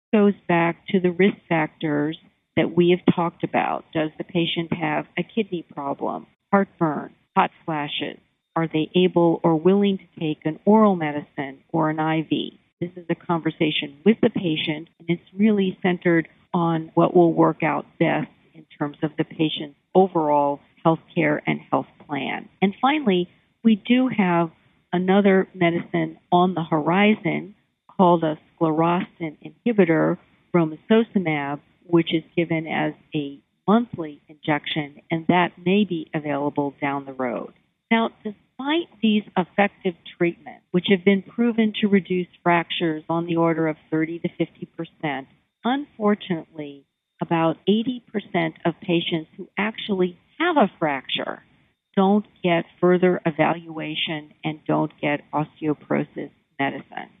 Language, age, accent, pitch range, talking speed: English, 50-69, American, 155-195 Hz, 135 wpm